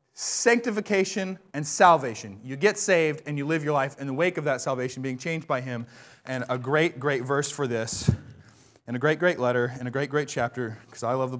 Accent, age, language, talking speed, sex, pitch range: American, 30-49, English, 220 wpm, male, 120-150 Hz